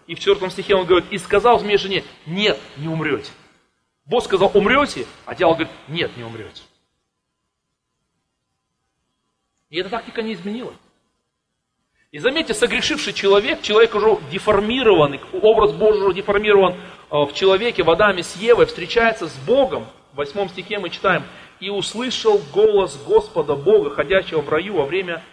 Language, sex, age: English, male, 40-59